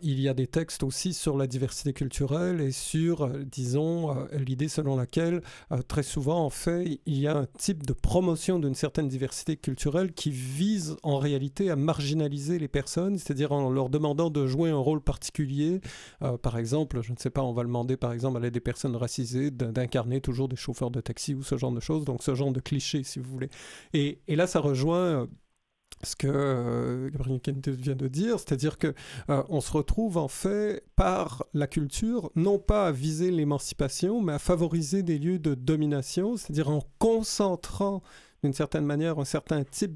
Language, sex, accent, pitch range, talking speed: French, male, French, 130-165 Hz, 195 wpm